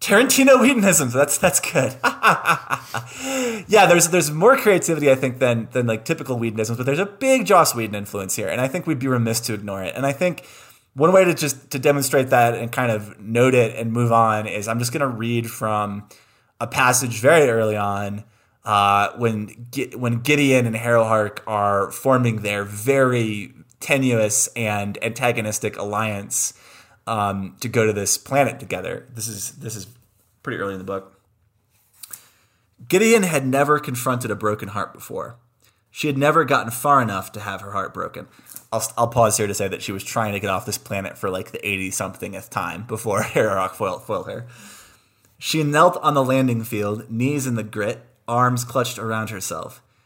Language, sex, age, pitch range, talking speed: English, male, 20-39, 105-135 Hz, 180 wpm